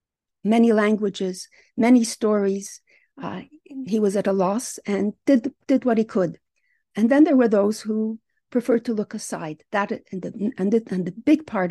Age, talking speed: 50-69, 180 wpm